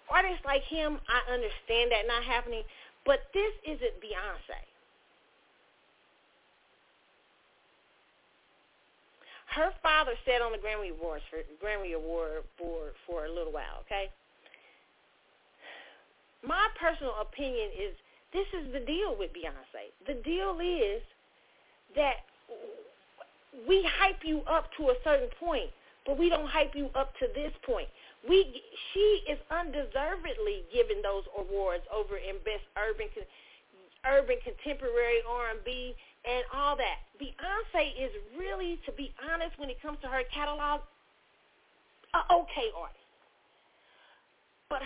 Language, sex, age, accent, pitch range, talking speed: English, female, 40-59, American, 240-390 Hz, 120 wpm